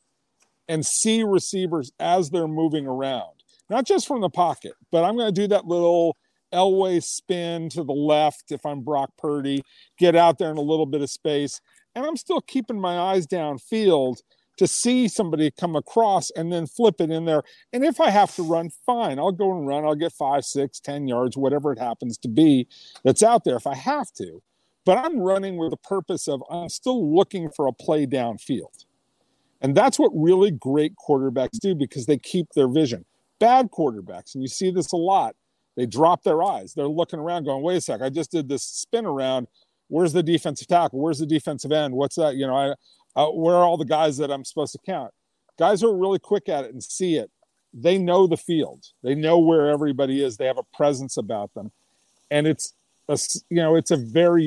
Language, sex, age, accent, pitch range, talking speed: English, male, 50-69, American, 145-185 Hz, 210 wpm